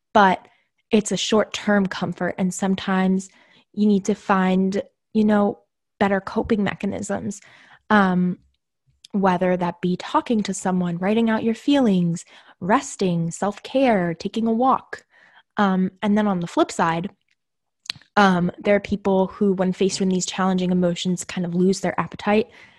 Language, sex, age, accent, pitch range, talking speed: English, female, 10-29, American, 185-215 Hz, 145 wpm